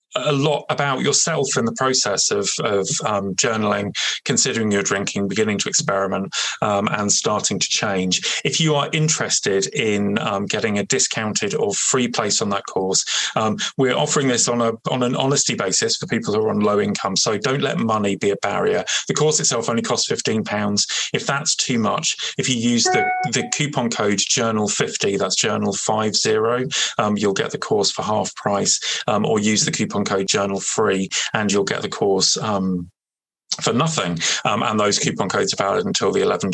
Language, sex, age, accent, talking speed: English, male, 30-49, British, 185 wpm